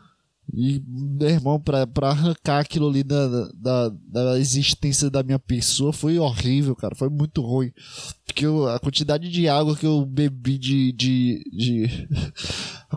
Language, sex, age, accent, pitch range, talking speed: Portuguese, male, 20-39, Brazilian, 135-160 Hz, 155 wpm